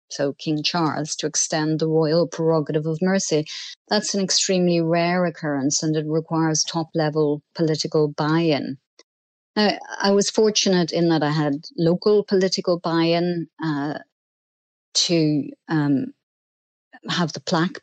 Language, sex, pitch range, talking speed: English, female, 150-175 Hz, 125 wpm